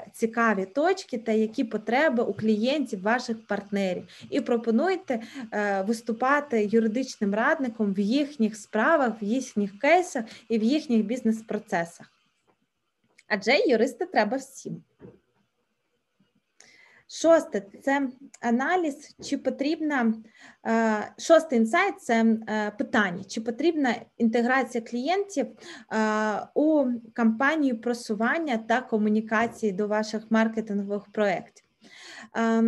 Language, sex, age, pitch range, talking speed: Ukrainian, female, 20-39, 220-270 Hz, 90 wpm